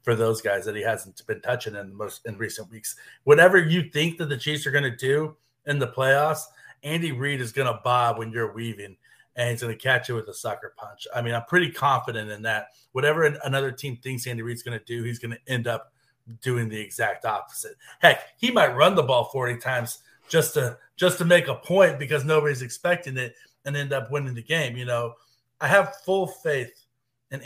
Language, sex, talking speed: English, male, 225 wpm